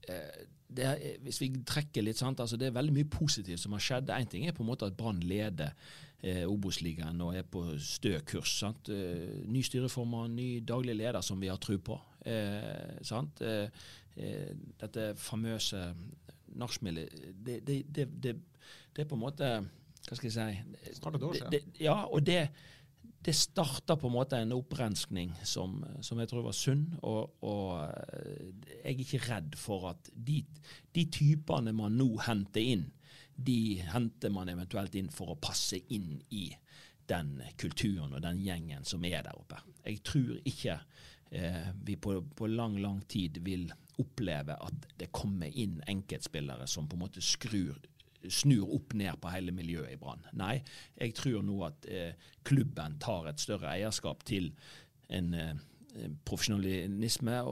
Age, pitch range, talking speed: 30-49, 95-135 Hz, 160 wpm